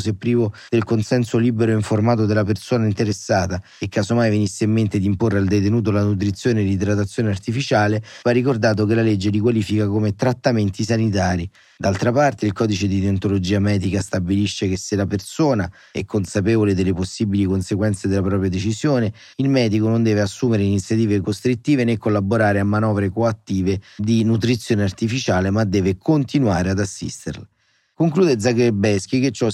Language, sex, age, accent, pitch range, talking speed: Italian, male, 30-49, native, 100-120 Hz, 160 wpm